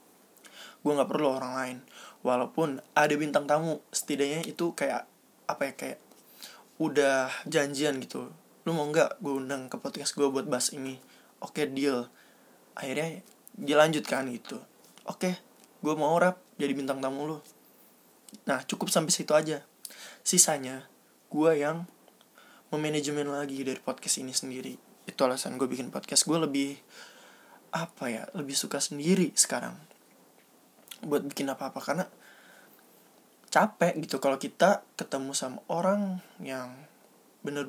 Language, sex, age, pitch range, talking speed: Indonesian, male, 20-39, 140-180 Hz, 135 wpm